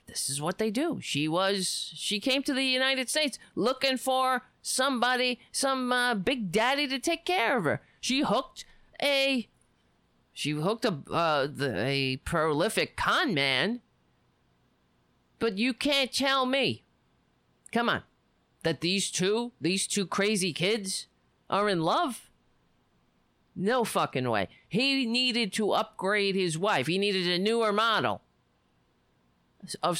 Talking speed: 140 wpm